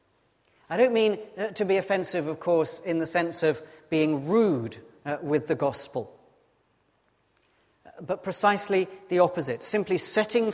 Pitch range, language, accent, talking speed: 135-190 Hz, English, British, 135 wpm